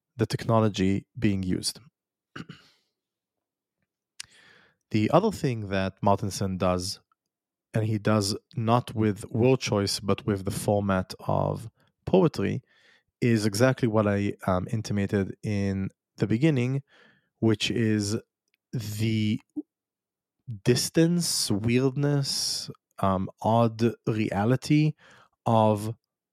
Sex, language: male, English